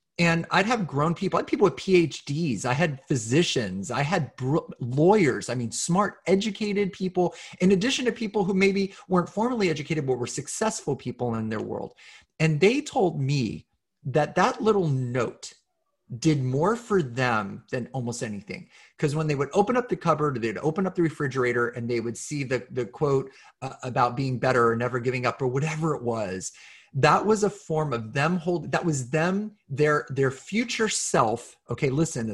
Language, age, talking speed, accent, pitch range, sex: English, 30-49, 190 wpm, American, 130-180 Hz, male